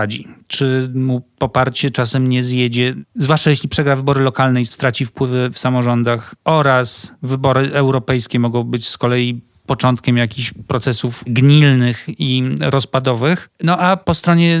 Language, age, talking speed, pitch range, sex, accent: Polish, 40-59, 135 wpm, 125-140 Hz, male, native